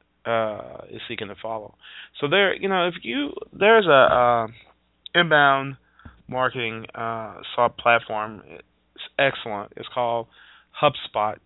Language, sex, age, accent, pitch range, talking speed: English, male, 30-49, American, 110-135 Hz, 125 wpm